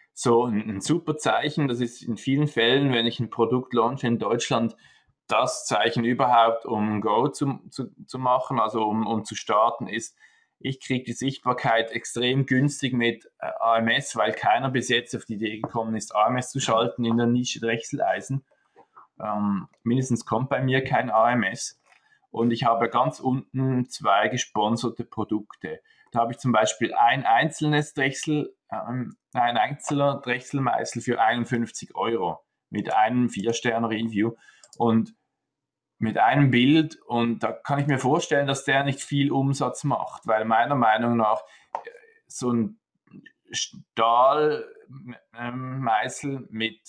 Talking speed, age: 145 wpm, 20-39